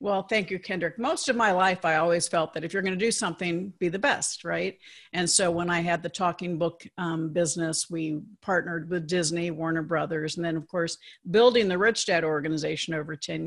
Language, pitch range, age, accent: English, 165-195 Hz, 50-69, American